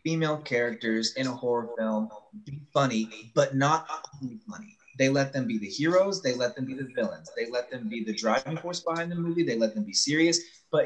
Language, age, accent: English, 20-39, American